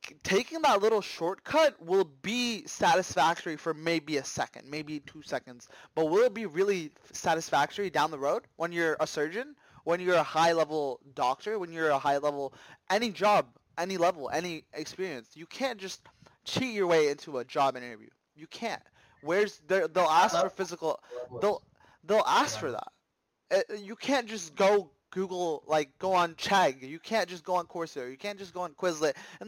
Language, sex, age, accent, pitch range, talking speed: English, male, 20-39, American, 150-195 Hz, 180 wpm